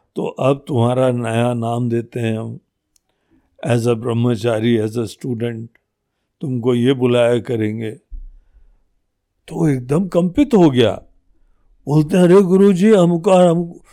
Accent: native